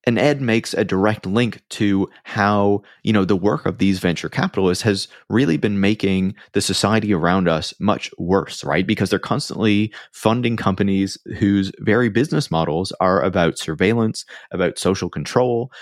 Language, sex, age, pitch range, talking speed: English, male, 30-49, 85-105 Hz, 160 wpm